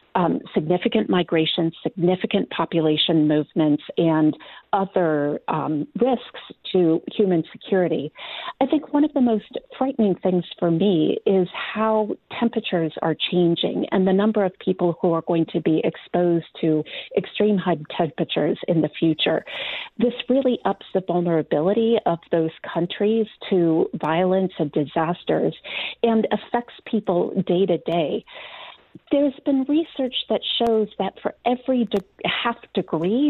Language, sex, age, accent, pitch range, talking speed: English, female, 40-59, American, 165-220 Hz, 135 wpm